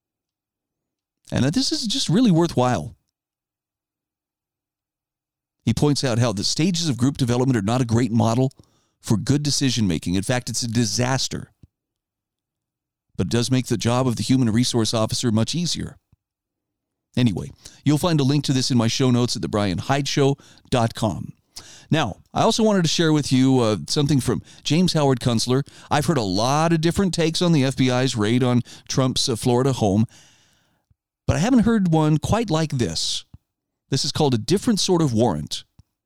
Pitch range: 115-150 Hz